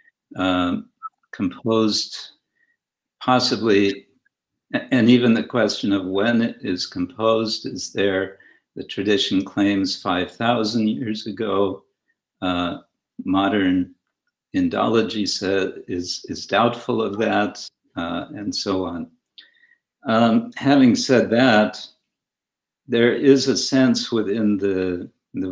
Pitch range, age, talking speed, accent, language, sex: 95-135 Hz, 60-79, 105 wpm, American, English, male